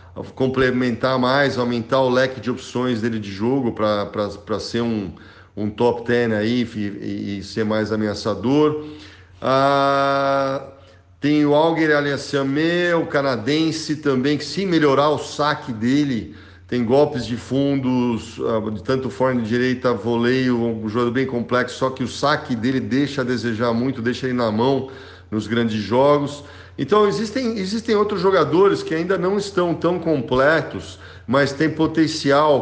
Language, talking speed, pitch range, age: Portuguese, 145 wpm, 120-150 Hz, 50-69